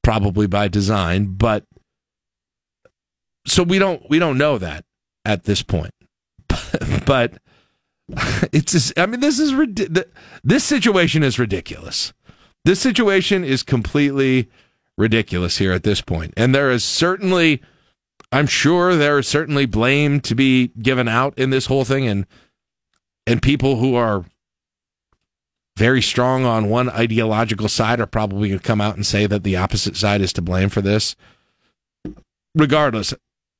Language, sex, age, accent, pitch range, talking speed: English, male, 40-59, American, 100-150 Hz, 145 wpm